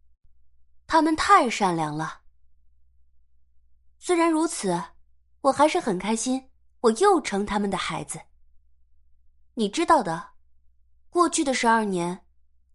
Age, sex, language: 20-39, female, Chinese